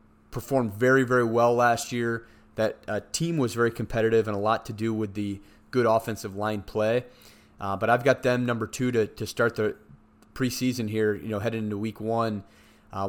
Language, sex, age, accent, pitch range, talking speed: English, male, 30-49, American, 105-125 Hz, 195 wpm